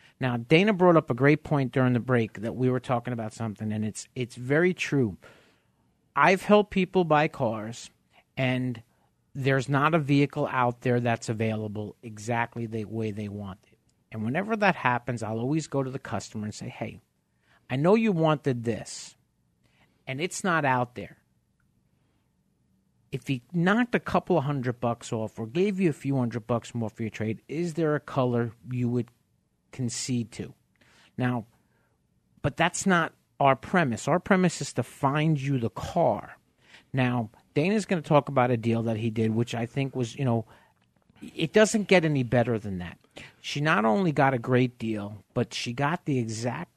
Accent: American